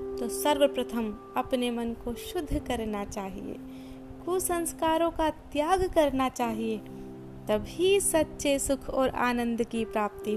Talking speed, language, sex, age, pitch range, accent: 115 wpm, Hindi, female, 30-49, 230-320 Hz, native